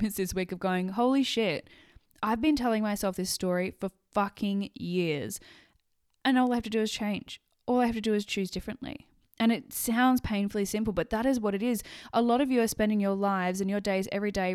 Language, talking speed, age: English, 225 wpm, 10-29